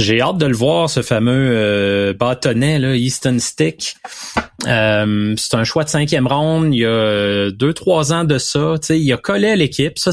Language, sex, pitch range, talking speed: French, male, 120-155 Hz, 195 wpm